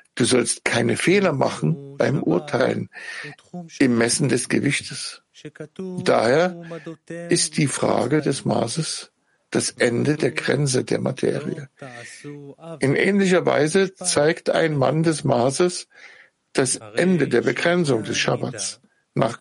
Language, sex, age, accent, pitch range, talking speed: German, male, 60-79, German, 125-170 Hz, 120 wpm